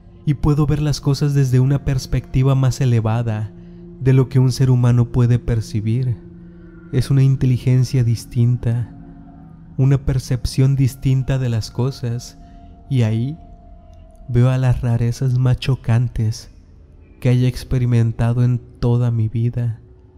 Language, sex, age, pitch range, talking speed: Spanish, male, 30-49, 110-135 Hz, 130 wpm